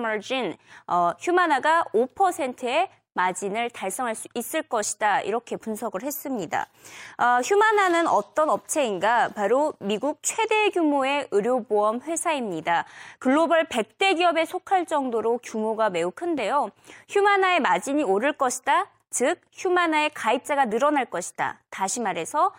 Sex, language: female, Korean